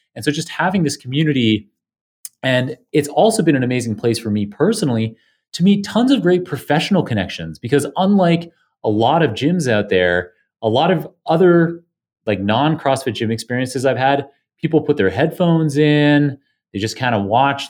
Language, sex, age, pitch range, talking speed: English, male, 30-49, 110-160 Hz, 175 wpm